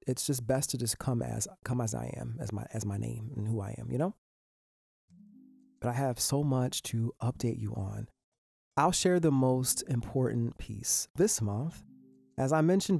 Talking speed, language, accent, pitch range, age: 195 wpm, English, American, 115-140 Hz, 30-49